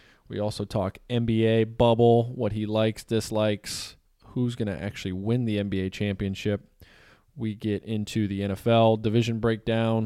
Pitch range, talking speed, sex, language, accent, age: 95-115 Hz, 145 wpm, male, English, American, 20-39